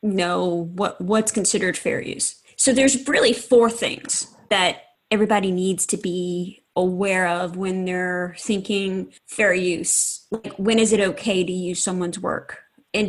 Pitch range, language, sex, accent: 190-255 Hz, English, female, American